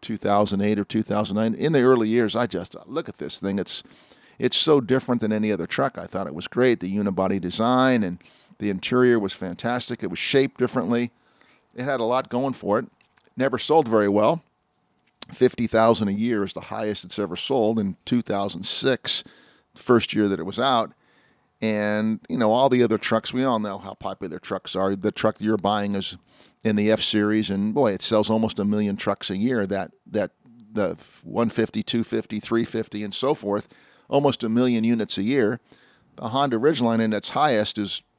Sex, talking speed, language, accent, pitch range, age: male, 195 wpm, English, American, 105-125 Hz, 50-69